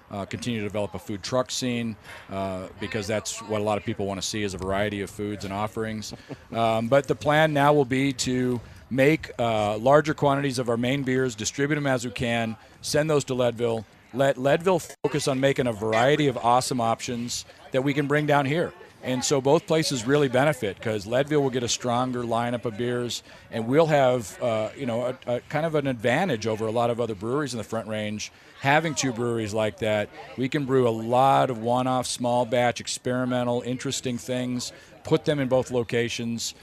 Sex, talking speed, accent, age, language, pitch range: male, 205 wpm, American, 40-59, English, 110-135 Hz